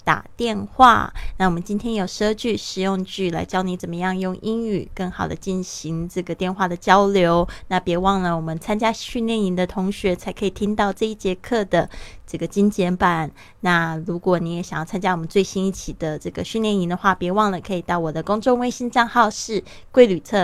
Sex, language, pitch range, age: female, Chinese, 175-215 Hz, 20-39